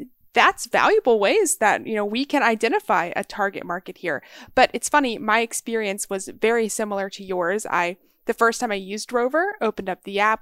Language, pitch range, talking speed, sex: English, 195-255 Hz, 195 wpm, female